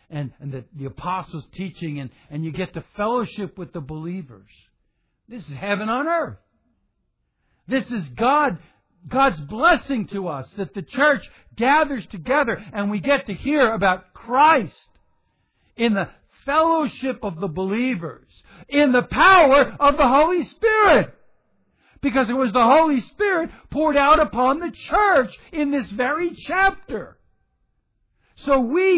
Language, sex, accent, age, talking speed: English, male, American, 60-79, 135 wpm